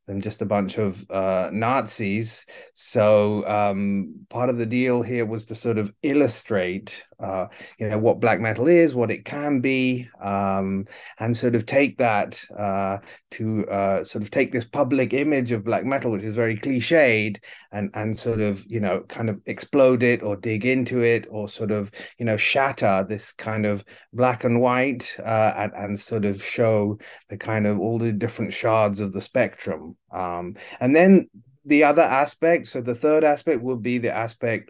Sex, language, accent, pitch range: male, English, British, 105-130 Hz